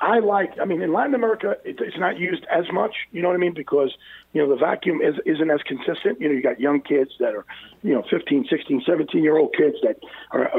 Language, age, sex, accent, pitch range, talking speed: English, 50-69, male, American, 150-230 Hz, 250 wpm